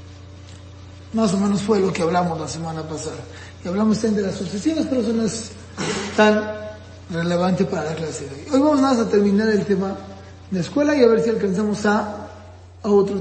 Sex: male